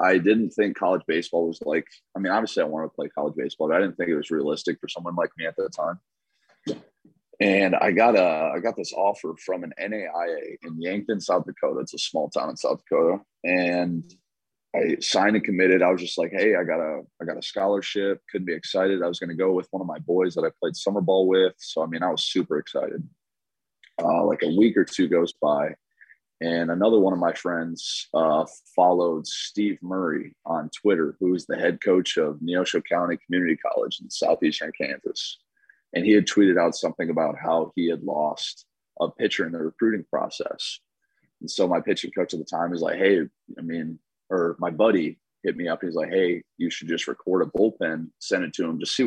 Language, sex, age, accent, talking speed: English, male, 20-39, American, 220 wpm